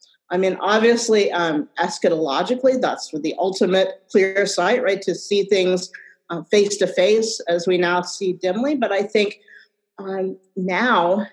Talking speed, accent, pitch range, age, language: 140 wpm, American, 180-225 Hz, 40-59, English